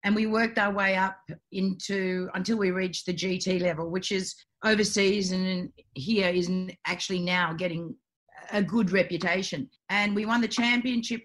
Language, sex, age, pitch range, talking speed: English, female, 50-69, 175-210 Hz, 160 wpm